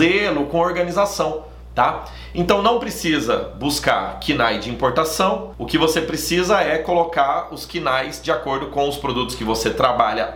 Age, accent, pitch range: 30-49, Brazilian, 125-165 Hz